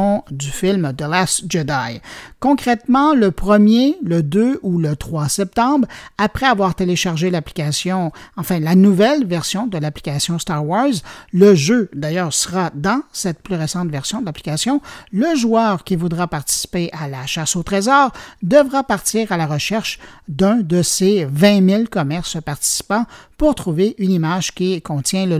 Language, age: French, 50-69